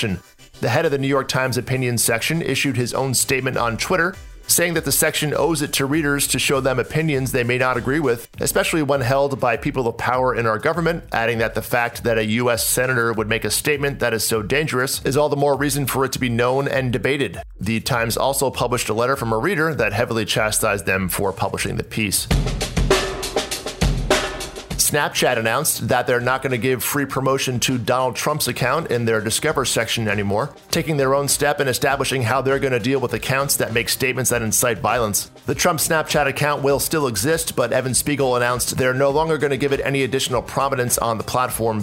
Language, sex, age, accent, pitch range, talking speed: English, male, 40-59, American, 115-140 Hz, 215 wpm